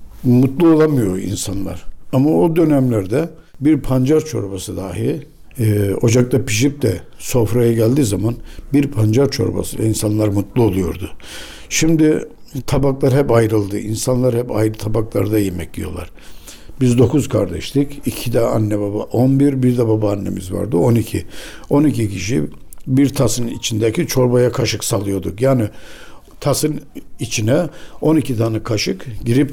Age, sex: 60-79, male